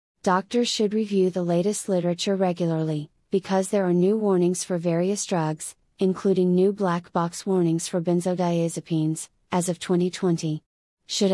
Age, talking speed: 30-49, 140 wpm